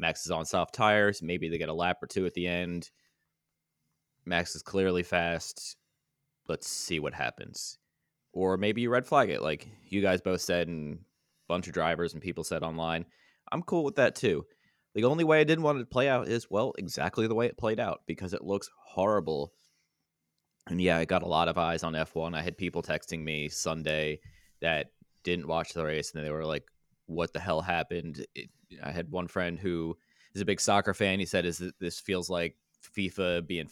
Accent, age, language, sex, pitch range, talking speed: American, 20-39, English, male, 80-95 Hz, 210 wpm